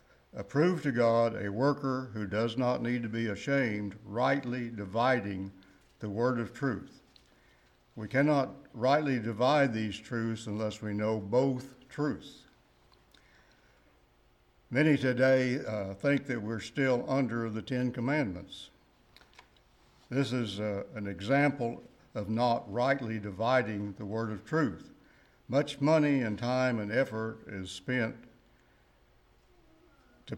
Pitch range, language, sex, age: 110-130 Hz, English, male, 60-79